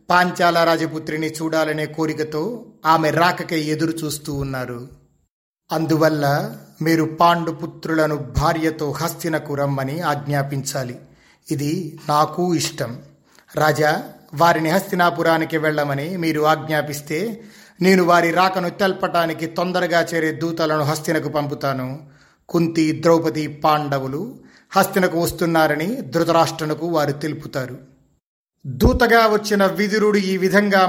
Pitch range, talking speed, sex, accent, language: 150-185 Hz, 90 wpm, male, native, Telugu